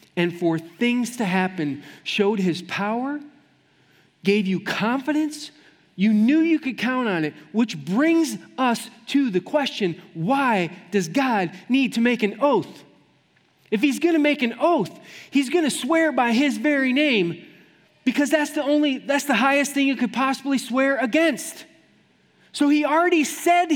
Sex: male